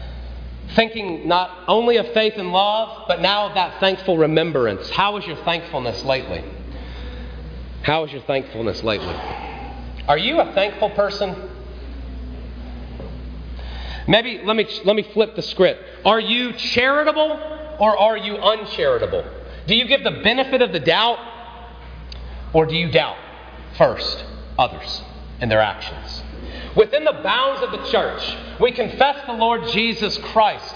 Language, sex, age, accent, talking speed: English, male, 40-59, American, 140 wpm